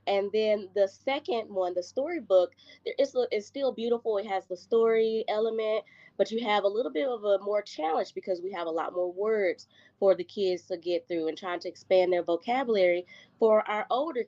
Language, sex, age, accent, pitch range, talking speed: English, female, 20-39, American, 180-225 Hz, 205 wpm